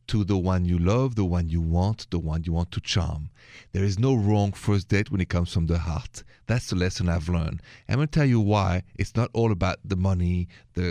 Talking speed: 250 wpm